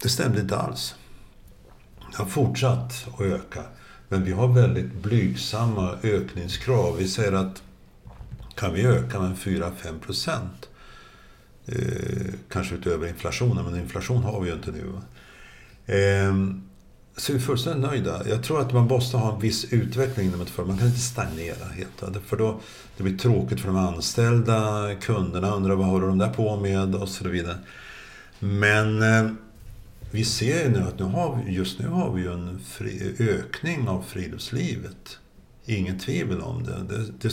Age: 60-79